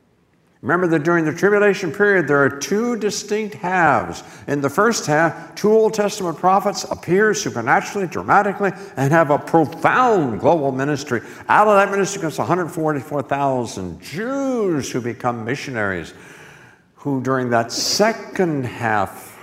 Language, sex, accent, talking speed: English, male, American, 135 wpm